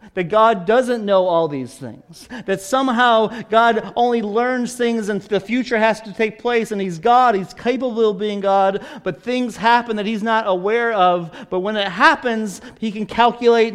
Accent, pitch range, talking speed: American, 190-240 Hz, 190 wpm